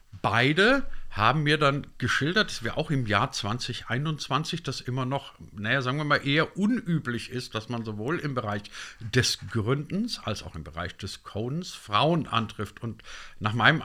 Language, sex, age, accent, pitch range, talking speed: German, male, 50-69, German, 115-160 Hz, 170 wpm